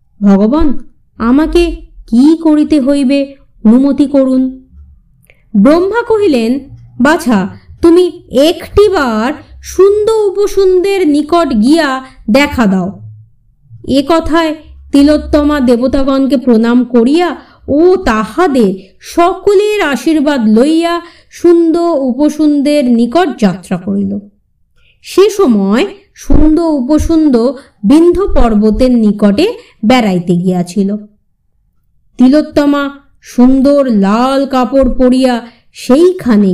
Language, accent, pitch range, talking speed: Bengali, native, 235-325 Hz, 70 wpm